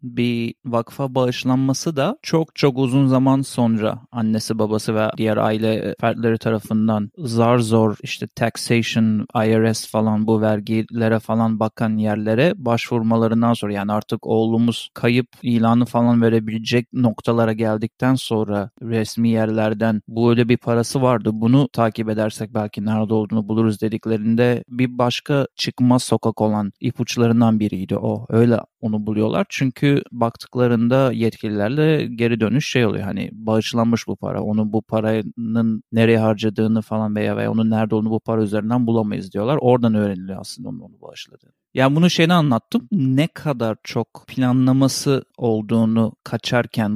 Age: 30-49